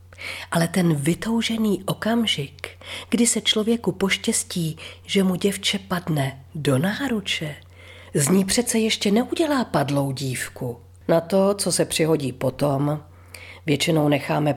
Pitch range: 130-190 Hz